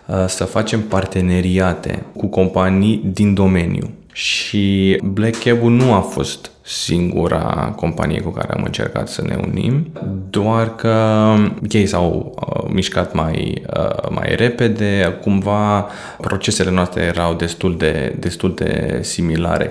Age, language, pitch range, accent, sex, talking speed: 20-39, Romanian, 90-115 Hz, native, male, 125 wpm